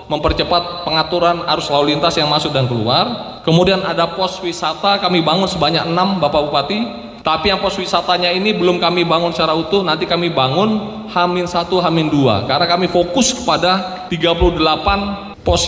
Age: 20-39